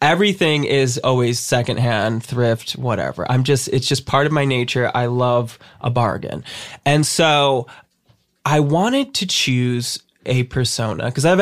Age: 20-39